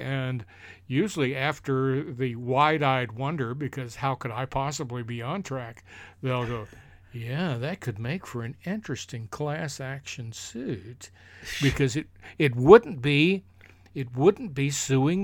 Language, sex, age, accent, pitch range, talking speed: English, male, 60-79, American, 120-145 Hz, 140 wpm